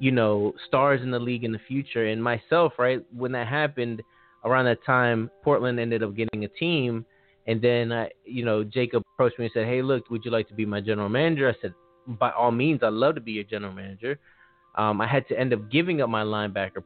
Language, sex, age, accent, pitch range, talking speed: English, male, 20-39, American, 105-130 Hz, 235 wpm